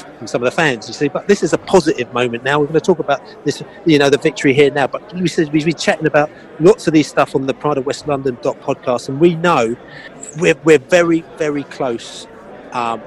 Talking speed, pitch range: 235 wpm, 125-175 Hz